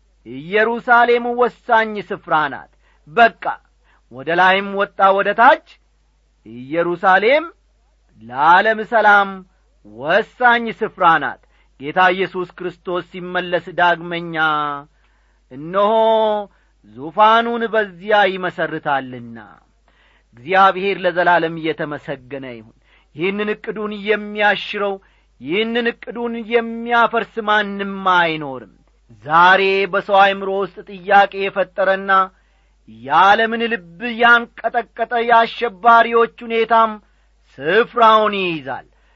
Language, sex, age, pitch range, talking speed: English, male, 40-59, 175-225 Hz, 75 wpm